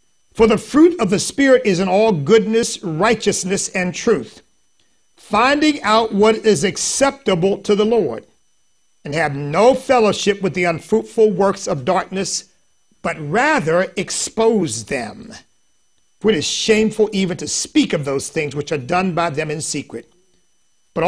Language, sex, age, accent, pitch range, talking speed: English, male, 50-69, American, 165-225 Hz, 150 wpm